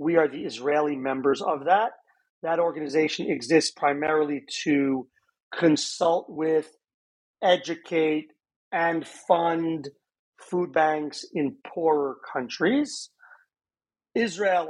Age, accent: 40-59, American